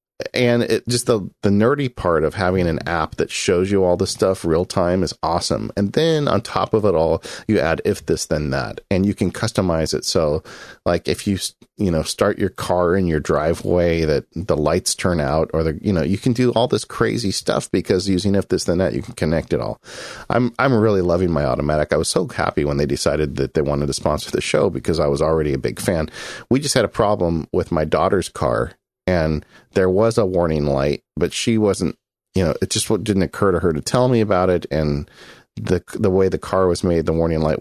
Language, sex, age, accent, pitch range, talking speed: English, male, 40-59, American, 75-105 Hz, 235 wpm